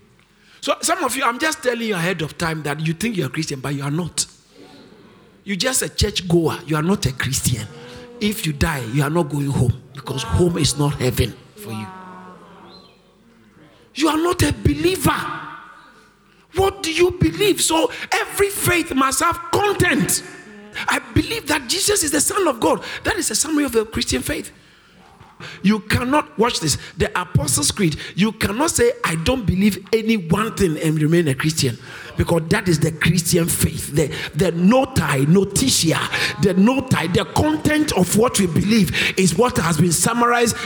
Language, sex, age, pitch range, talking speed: English, male, 50-69, 170-240 Hz, 180 wpm